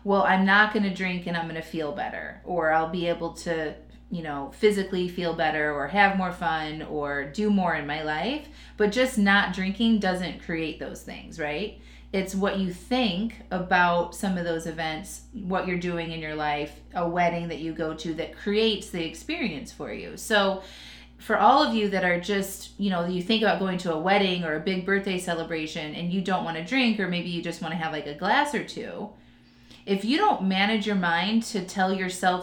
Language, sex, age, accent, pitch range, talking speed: English, female, 30-49, American, 170-210 Hz, 215 wpm